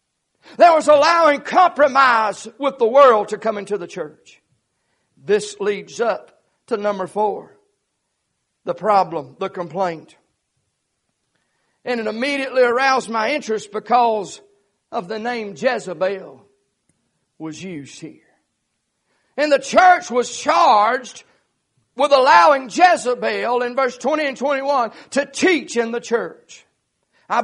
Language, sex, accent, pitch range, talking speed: English, male, American, 220-285 Hz, 120 wpm